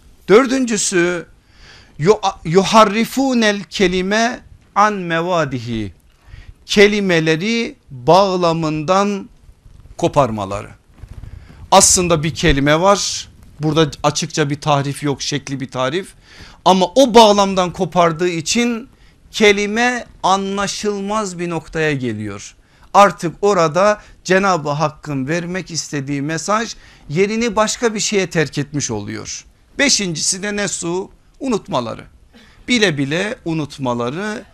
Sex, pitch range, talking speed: male, 150-205 Hz, 90 wpm